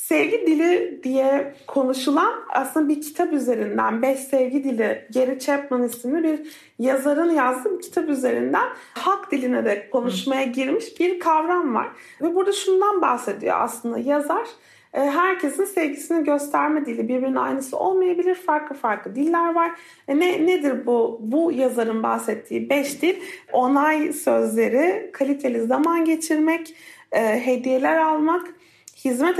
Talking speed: 130 wpm